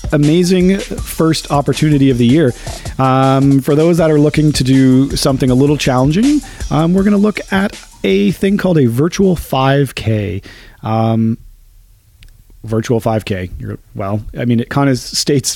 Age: 40-59